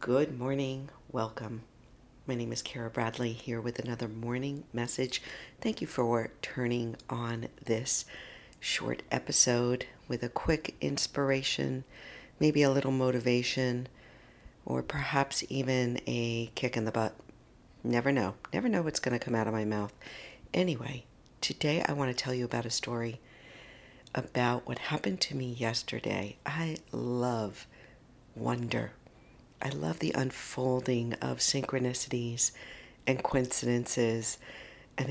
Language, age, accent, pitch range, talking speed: English, 50-69, American, 115-130 Hz, 130 wpm